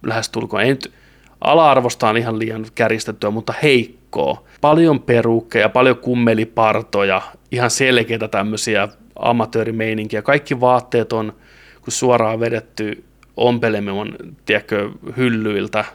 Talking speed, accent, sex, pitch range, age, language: 100 wpm, native, male, 110-125 Hz, 30-49, Finnish